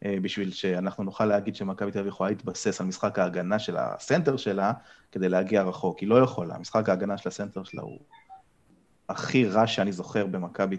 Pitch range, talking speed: 100-120 Hz, 180 wpm